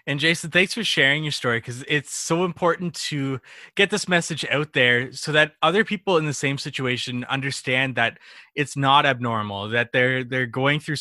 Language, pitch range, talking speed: English, 125-160 Hz, 190 wpm